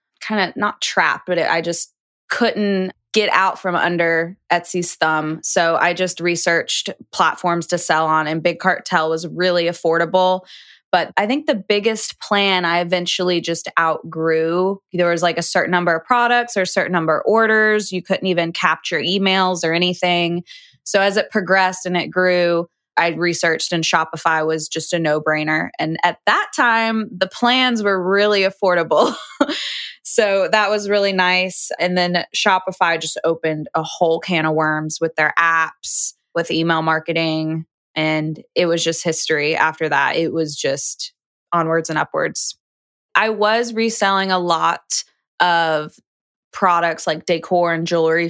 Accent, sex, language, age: American, female, English, 20-39